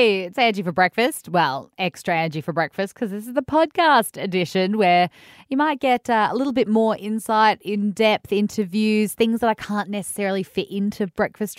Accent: Australian